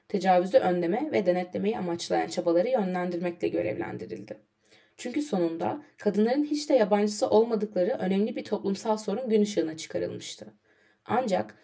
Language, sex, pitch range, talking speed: Turkish, female, 170-225 Hz, 120 wpm